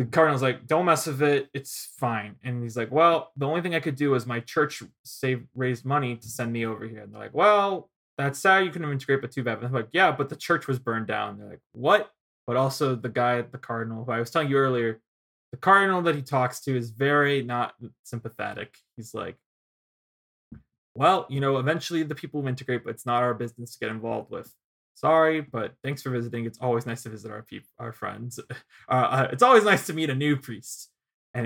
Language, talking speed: English, 235 wpm